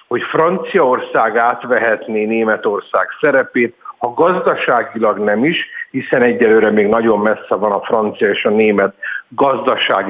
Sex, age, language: male, 50-69, Hungarian